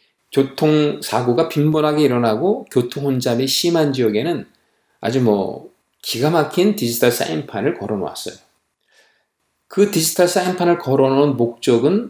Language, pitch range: Korean, 125-185 Hz